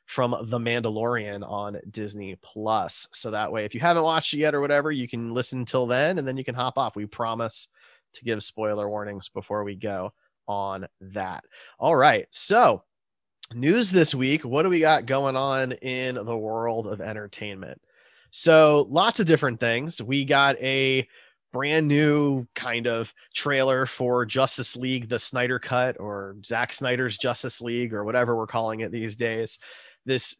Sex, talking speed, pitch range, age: male, 175 wpm, 110-140 Hz, 20-39